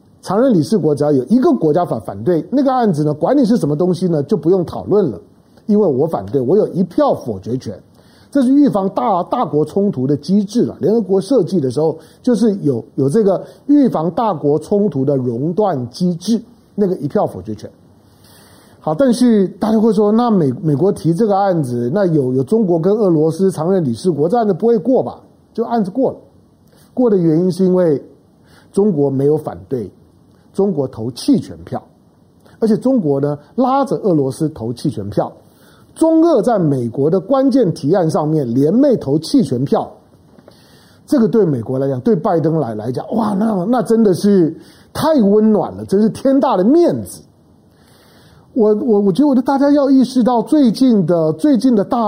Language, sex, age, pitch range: Chinese, male, 50-69, 150-235 Hz